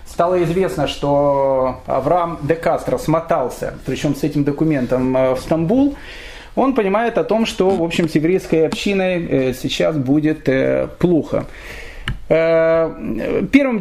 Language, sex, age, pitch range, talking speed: Russian, male, 30-49, 145-190 Hz, 110 wpm